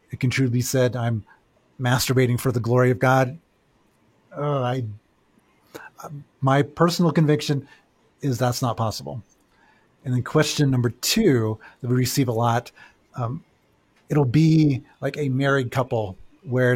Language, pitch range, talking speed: English, 120-140 Hz, 140 wpm